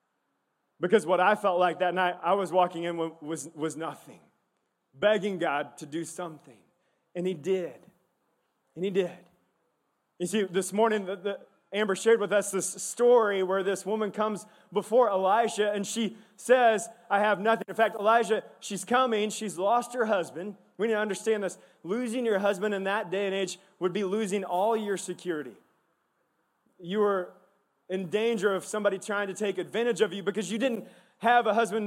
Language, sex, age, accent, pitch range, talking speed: English, male, 20-39, American, 190-230 Hz, 175 wpm